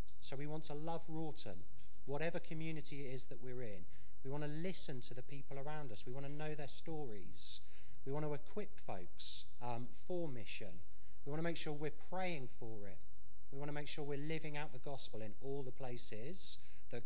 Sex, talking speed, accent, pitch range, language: male, 210 wpm, British, 110-150 Hz, English